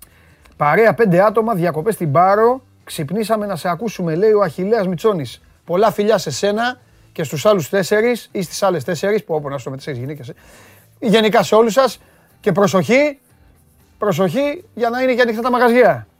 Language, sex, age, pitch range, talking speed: Greek, male, 30-49, 170-230 Hz, 165 wpm